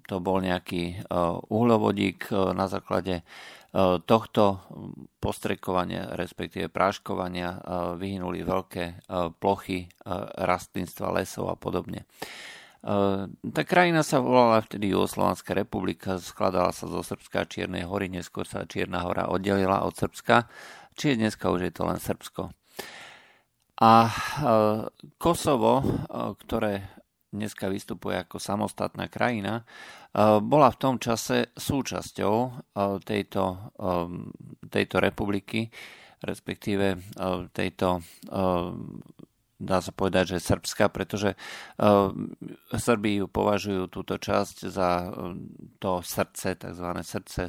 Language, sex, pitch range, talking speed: Slovak, male, 90-105 Hz, 100 wpm